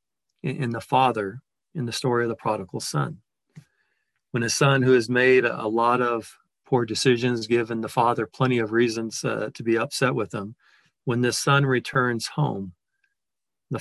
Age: 40-59